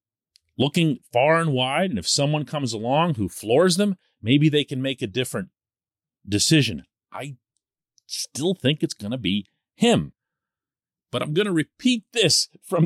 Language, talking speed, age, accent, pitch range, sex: English, 160 wpm, 40-59, American, 120-190 Hz, male